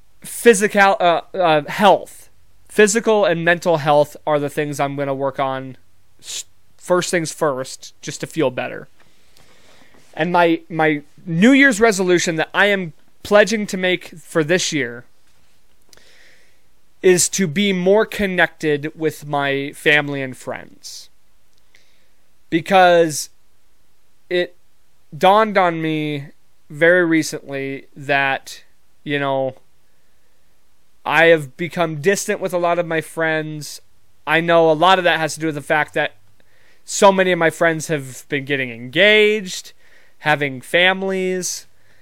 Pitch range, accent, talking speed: 135-180 Hz, American, 130 wpm